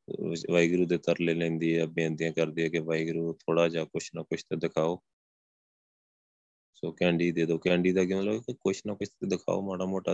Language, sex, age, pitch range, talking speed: Punjabi, male, 20-39, 85-95 Hz, 190 wpm